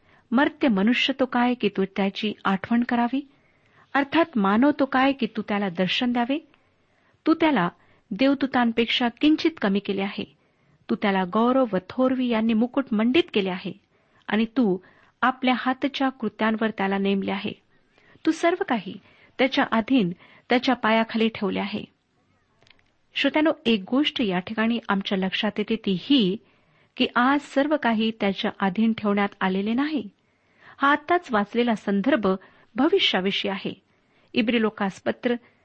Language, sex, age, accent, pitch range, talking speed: Marathi, female, 50-69, native, 200-260 Hz, 125 wpm